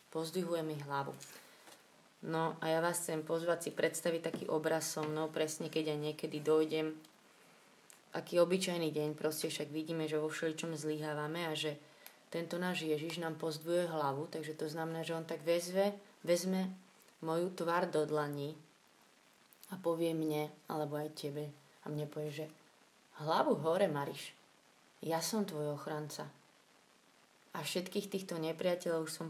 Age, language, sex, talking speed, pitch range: 20-39, Slovak, female, 145 wpm, 155-170 Hz